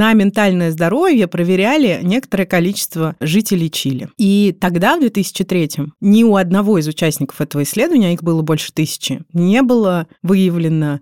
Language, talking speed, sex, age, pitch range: Russian, 135 wpm, female, 30-49, 155-205 Hz